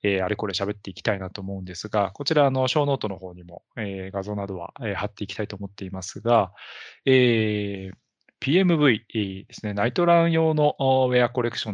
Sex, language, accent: male, Japanese, native